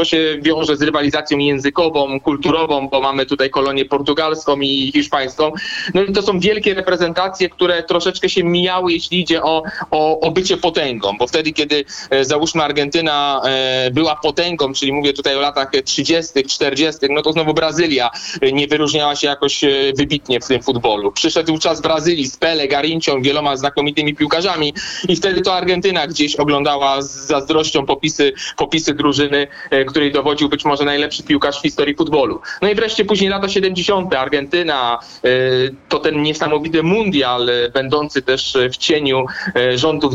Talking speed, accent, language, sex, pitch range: 155 wpm, native, Polish, male, 140-165 Hz